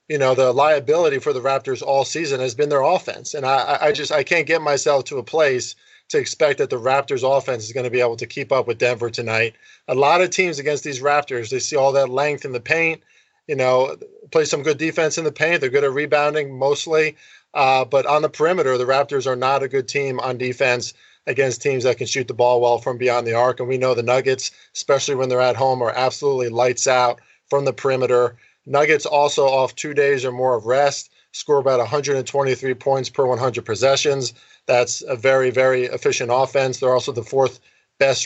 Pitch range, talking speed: 125-150 Hz, 220 wpm